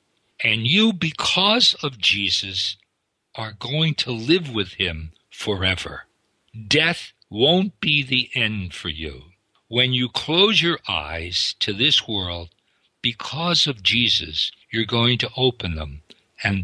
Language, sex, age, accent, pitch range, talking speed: English, male, 60-79, American, 100-155 Hz, 130 wpm